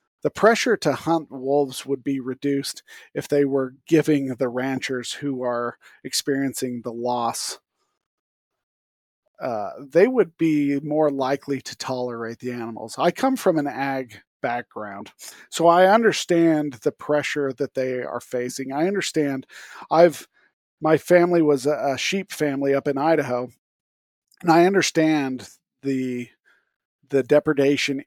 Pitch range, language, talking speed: 130-145 Hz, English, 135 wpm